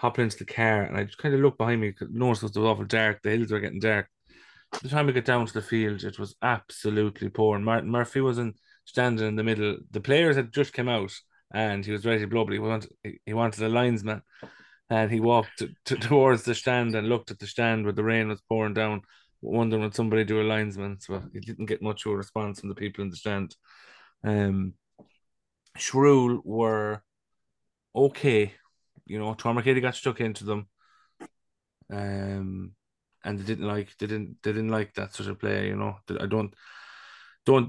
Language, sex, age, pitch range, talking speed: English, male, 30-49, 105-115 Hz, 210 wpm